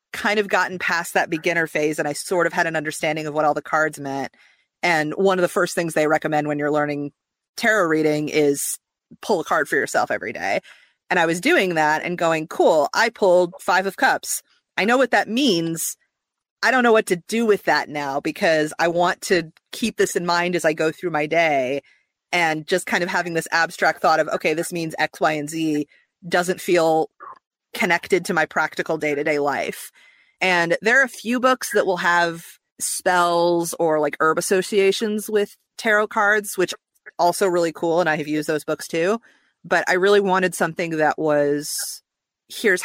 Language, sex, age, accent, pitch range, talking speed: English, female, 30-49, American, 155-185 Hz, 200 wpm